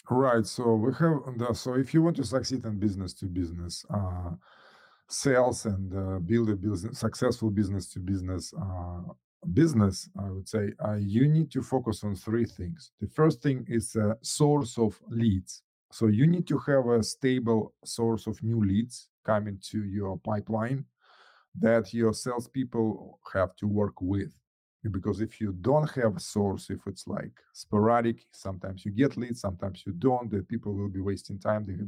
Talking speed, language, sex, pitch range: 175 wpm, English, male, 100-120 Hz